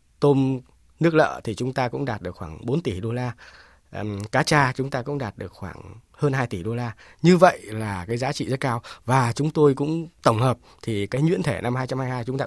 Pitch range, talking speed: 110-145 Hz, 235 wpm